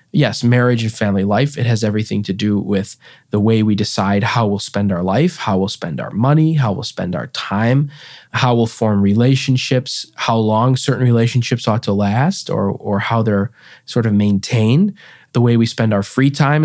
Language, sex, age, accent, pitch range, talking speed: English, male, 20-39, American, 110-140 Hz, 200 wpm